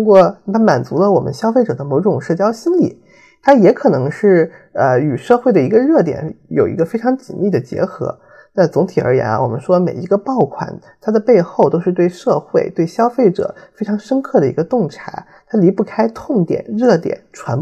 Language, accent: Chinese, native